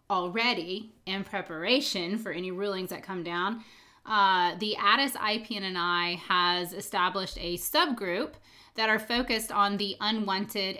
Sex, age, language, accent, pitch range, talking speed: female, 30-49, English, American, 185-235 Hz, 135 wpm